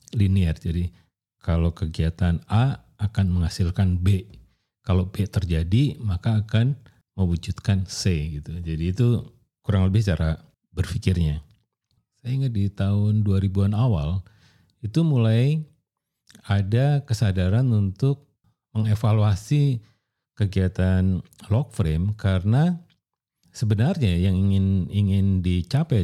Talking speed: 100 wpm